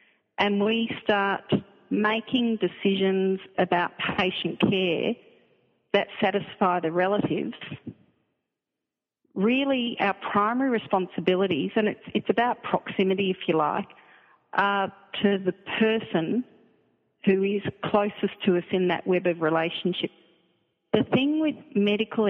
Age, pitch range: 40-59, 185-220 Hz